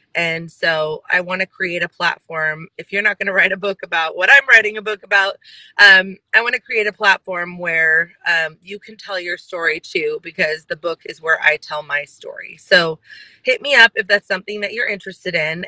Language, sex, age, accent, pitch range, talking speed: English, female, 30-49, American, 175-210 Hz, 220 wpm